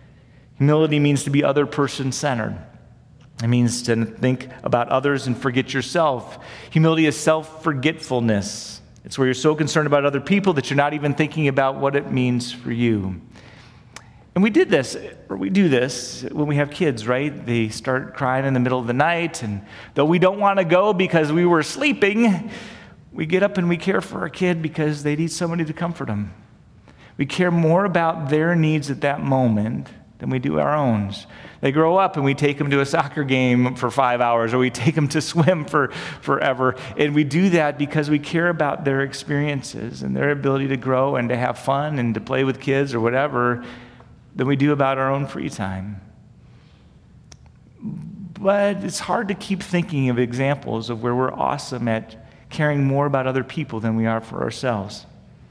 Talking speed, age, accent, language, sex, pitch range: 195 wpm, 40-59, American, English, male, 125-155 Hz